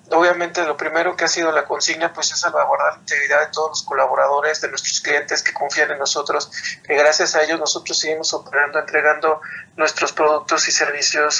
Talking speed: 190 wpm